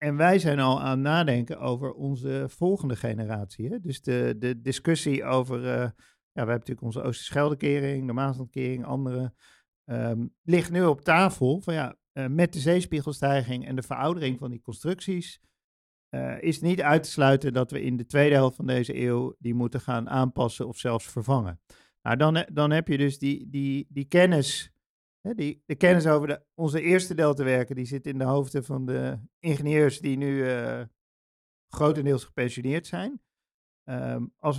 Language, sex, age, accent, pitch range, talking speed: English, male, 50-69, Dutch, 125-150 Hz, 170 wpm